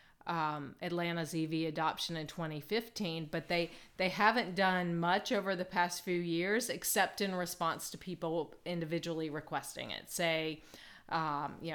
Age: 40-59